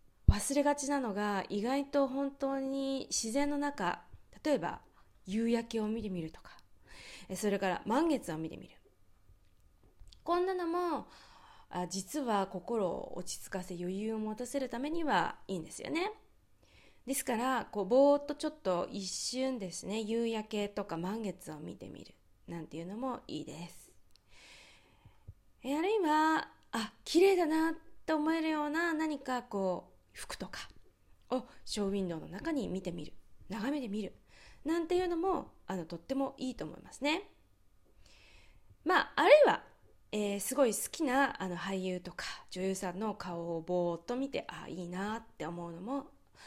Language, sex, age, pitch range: Japanese, female, 20-39, 180-280 Hz